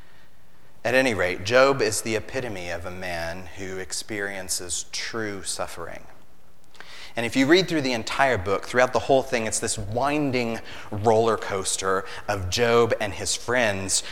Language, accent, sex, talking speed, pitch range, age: English, American, male, 155 wpm, 105-145 Hz, 30-49